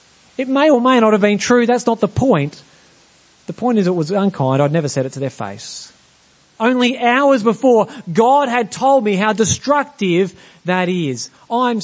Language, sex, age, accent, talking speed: English, male, 30-49, Australian, 190 wpm